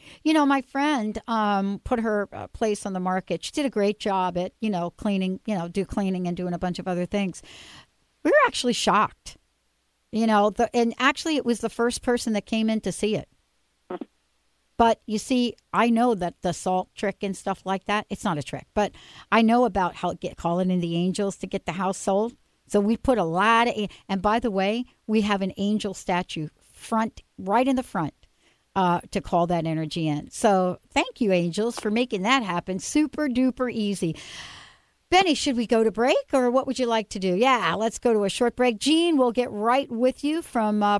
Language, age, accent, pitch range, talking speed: English, 60-79, American, 180-240 Hz, 215 wpm